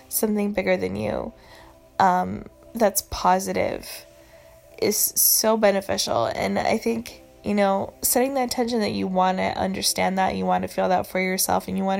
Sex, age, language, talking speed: female, 10-29, English, 170 wpm